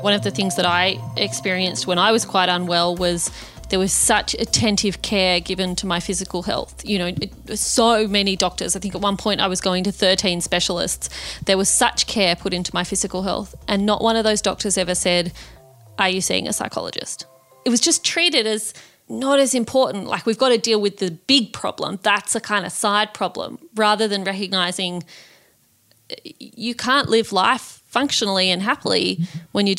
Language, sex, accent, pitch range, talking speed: English, female, Australian, 185-220 Hz, 195 wpm